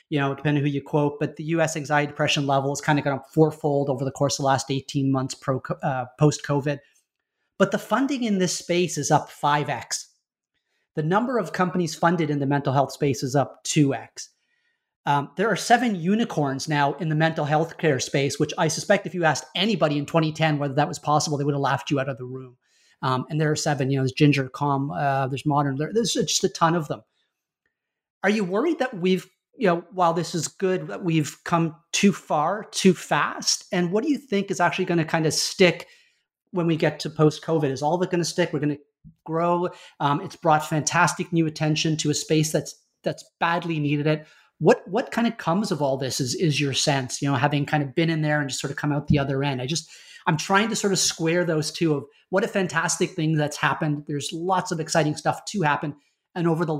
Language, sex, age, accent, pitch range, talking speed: English, male, 30-49, American, 145-175 Hz, 230 wpm